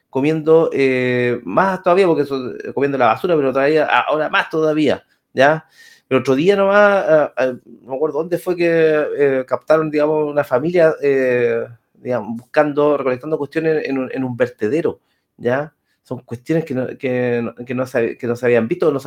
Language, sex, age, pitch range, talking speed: Spanish, male, 30-49, 125-165 Hz, 190 wpm